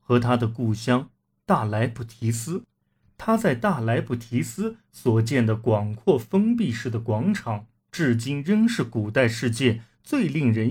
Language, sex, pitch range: Chinese, male, 110-160 Hz